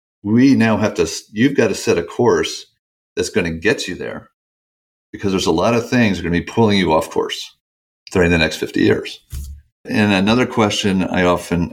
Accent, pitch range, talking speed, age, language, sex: American, 85-110 Hz, 210 wpm, 50-69, English, male